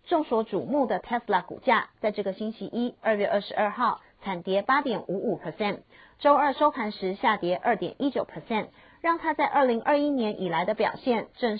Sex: female